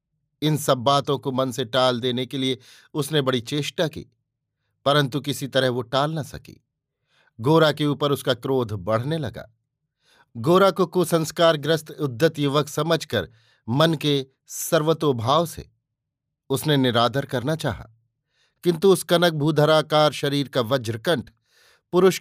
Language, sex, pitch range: Hindi, male, 130-155 Hz